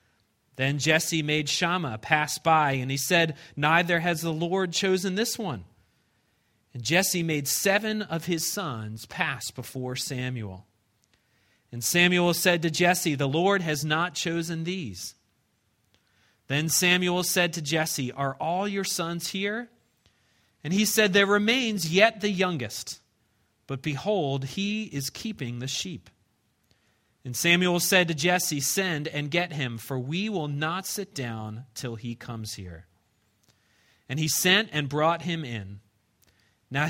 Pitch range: 115-175 Hz